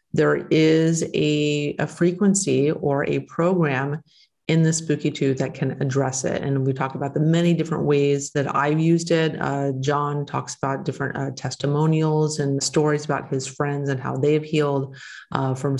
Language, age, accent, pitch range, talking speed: English, 30-49, American, 135-155 Hz, 180 wpm